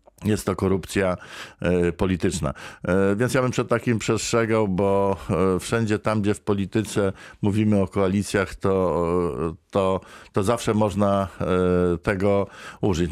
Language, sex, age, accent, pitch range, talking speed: Polish, male, 50-69, native, 95-120 Hz, 115 wpm